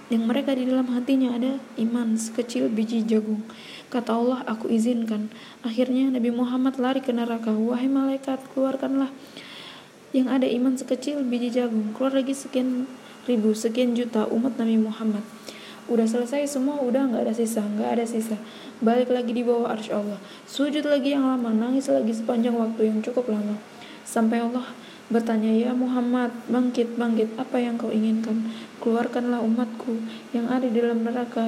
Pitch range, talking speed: 225-255 Hz, 155 wpm